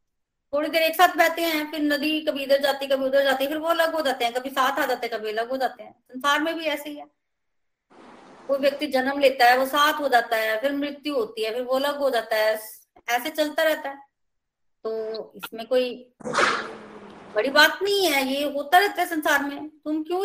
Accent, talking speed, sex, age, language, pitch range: native, 220 wpm, female, 30-49, Hindi, 230-300 Hz